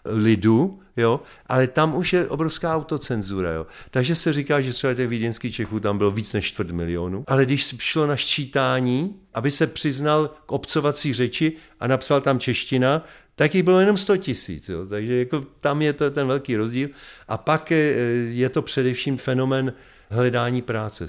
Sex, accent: male, native